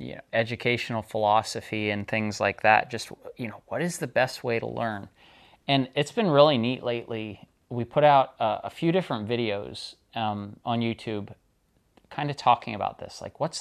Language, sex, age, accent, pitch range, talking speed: English, male, 30-49, American, 105-125 Hz, 185 wpm